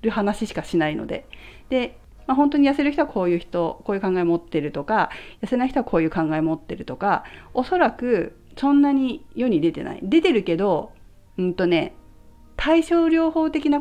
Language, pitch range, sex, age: Japanese, 175-285 Hz, female, 40-59